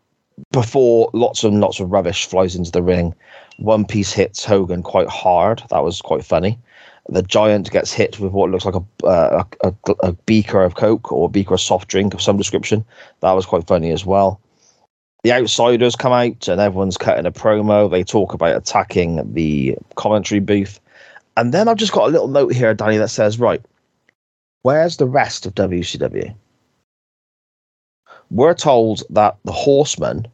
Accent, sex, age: British, male, 20-39